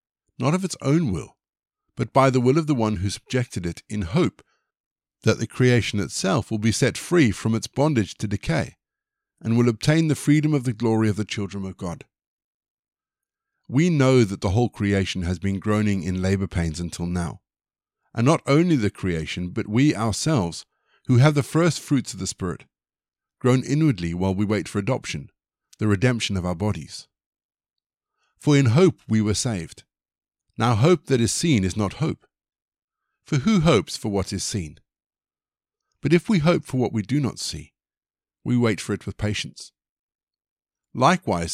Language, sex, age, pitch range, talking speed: English, male, 50-69, 100-135 Hz, 180 wpm